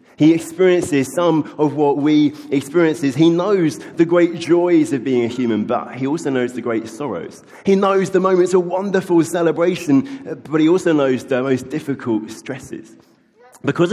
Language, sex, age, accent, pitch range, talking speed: English, male, 30-49, British, 135-185 Hz, 170 wpm